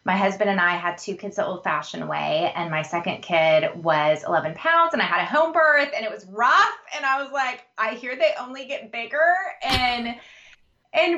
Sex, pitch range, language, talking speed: female, 160-225 Hz, English, 210 wpm